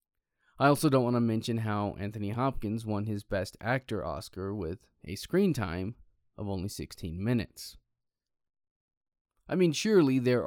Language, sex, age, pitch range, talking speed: English, male, 20-39, 95-120 Hz, 150 wpm